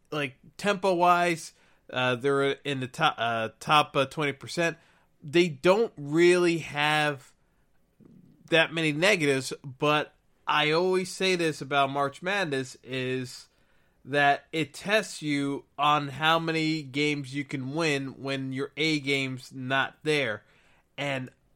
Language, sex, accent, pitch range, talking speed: English, male, American, 130-155 Hz, 130 wpm